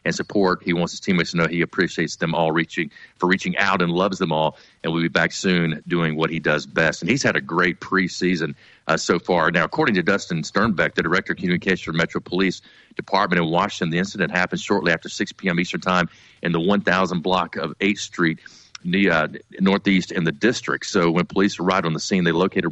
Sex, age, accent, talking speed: male, 40-59, American, 220 wpm